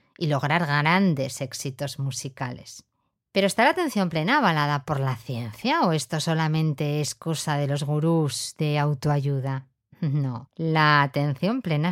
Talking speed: 140 wpm